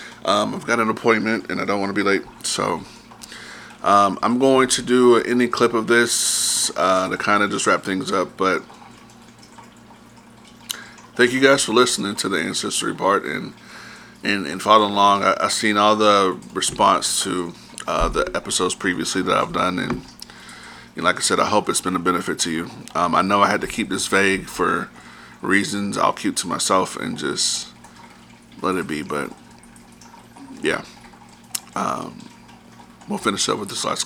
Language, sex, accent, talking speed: English, male, American, 175 wpm